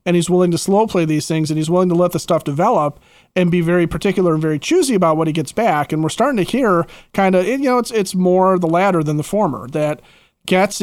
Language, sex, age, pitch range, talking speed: English, male, 40-59, 160-190 Hz, 260 wpm